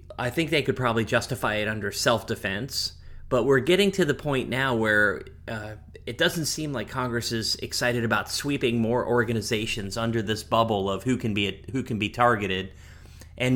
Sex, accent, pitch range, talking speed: male, American, 100-130 Hz, 180 wpm